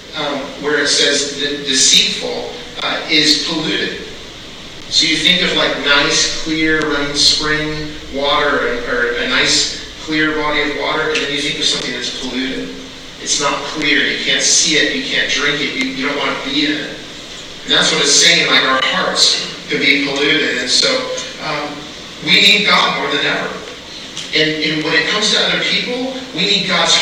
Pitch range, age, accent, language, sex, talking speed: 145-175 Hz, 40-59, American, English, male, 185 wpm